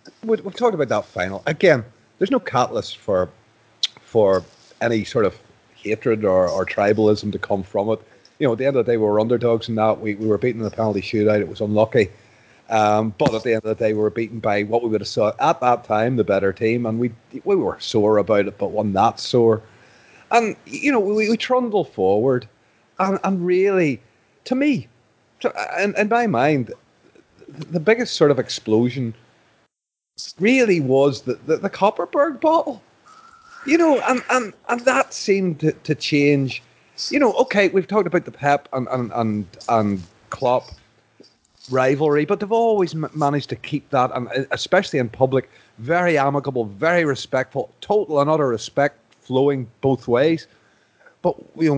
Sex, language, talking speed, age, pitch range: male, English, 185 wpm, 30-49, 110-180 Hz